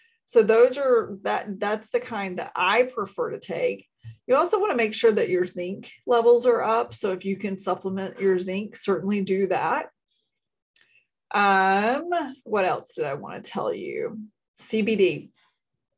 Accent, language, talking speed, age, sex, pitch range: American, English, 165 wpm, 30-49, female, 195-245 Hz